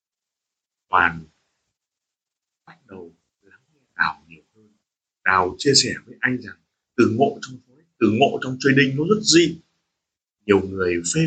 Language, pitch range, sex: Vietnamese, 120-175 Hz, male